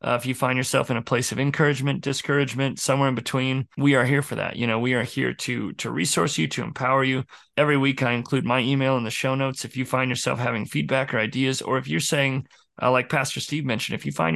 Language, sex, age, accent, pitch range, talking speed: English, male, 30-49, American, 120-135 Hz, 255 wpm